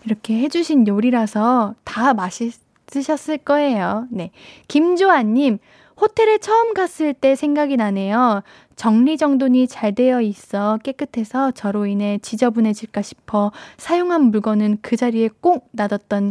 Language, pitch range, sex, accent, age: Korean, 210-300 Hz, female, native, 20-39